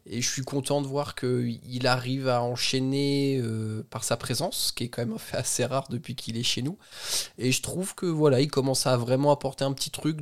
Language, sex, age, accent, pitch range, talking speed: French, male, 20-39, French, 110-135 Hz, 240 wpm